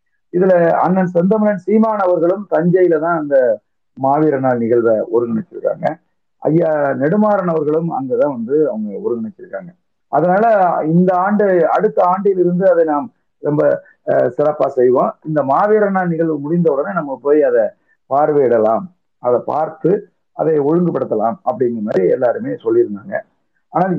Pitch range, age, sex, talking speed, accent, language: 130-210 Hz, 50-69, male, 120 wpm, native, Tamil